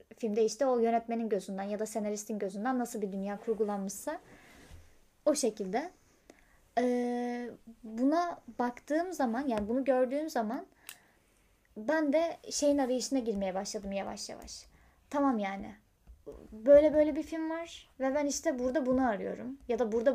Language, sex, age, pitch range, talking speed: Turkish, female, 20-39, 220-275 Hz, 140 wpm